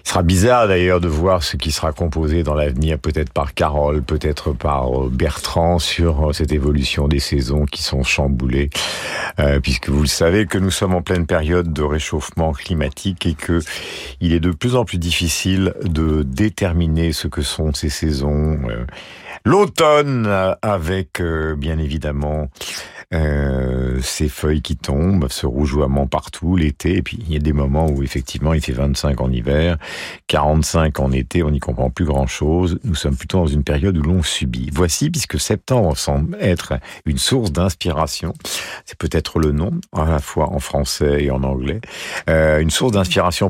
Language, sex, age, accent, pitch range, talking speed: French, male, 50-69, French, 70-90 Hz, 175 wpm